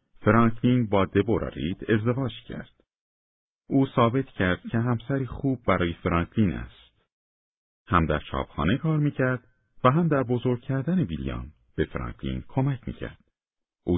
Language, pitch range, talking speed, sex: Persian, 80-125 Hz, 130 wpm, male